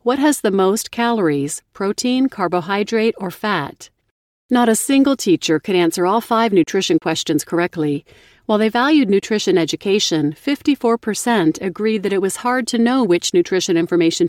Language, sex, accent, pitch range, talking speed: English, female, American, 170-225 Hz, 150 wpm